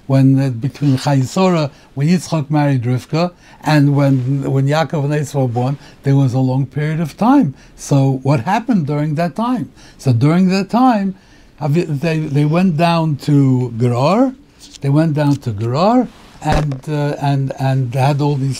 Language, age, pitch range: English, 60-79, 130-170 Hz